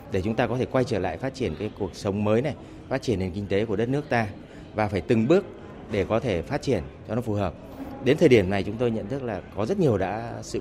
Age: 30-49